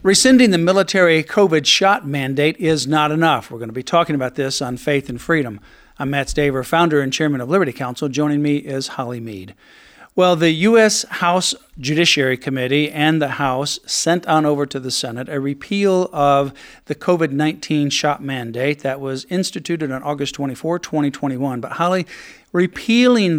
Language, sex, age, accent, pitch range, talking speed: English, male, 50-69, American, 140-170 Hz, 170 wpm